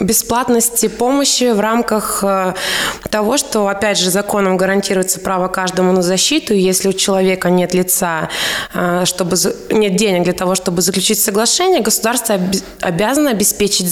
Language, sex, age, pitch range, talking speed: Russian, female, 20-39, 185-220 Hz, 125 wpm